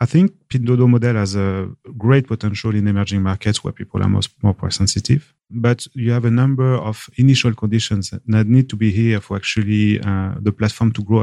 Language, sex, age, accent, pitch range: Chinese, male, 30-49, French, 105-120 Hz